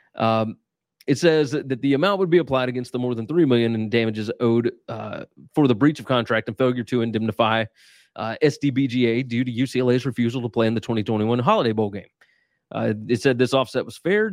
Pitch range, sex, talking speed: 115-145 Hz, male, 205 wpm